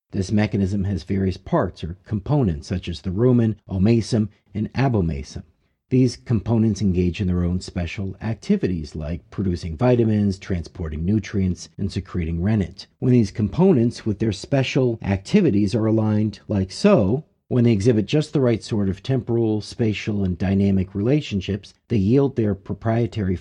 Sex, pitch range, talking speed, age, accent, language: male, 95-115 Hz, 150 wpm, 50-69, American, English